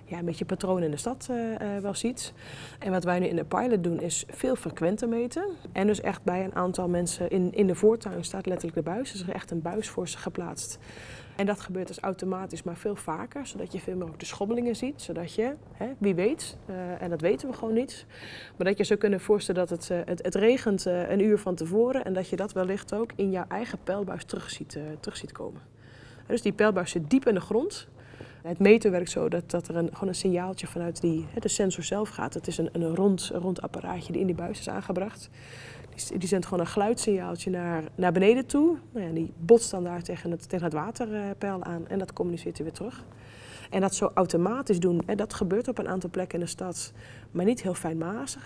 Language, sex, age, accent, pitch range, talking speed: Dutch, female, 20-39, Dutch, 170-205 Hz, 240 wpm